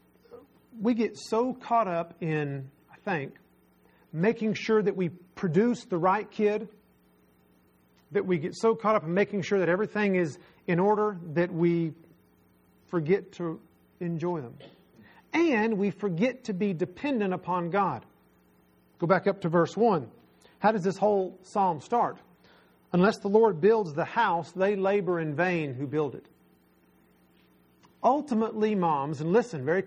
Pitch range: 125-195 Hz